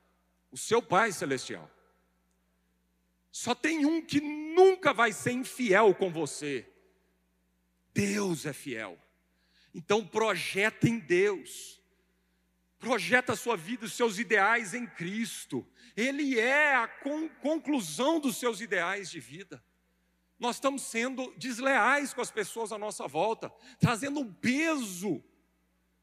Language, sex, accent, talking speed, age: Portuguese, male, Brazilian, 120 wpm, 40-59